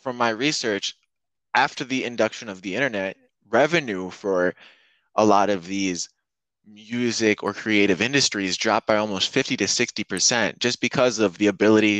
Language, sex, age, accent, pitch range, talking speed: English, male, 20-39, American, 100-130 Hz, 155 wpm